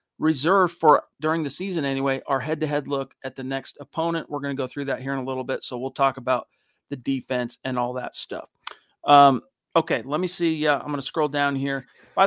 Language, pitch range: English, 140-170 Hz